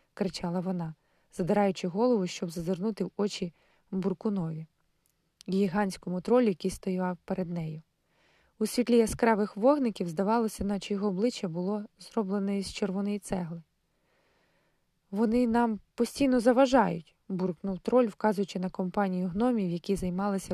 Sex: female